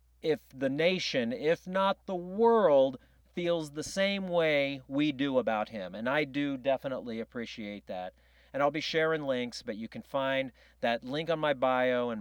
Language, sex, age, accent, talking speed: English, male, 40-59, American, 175 wpm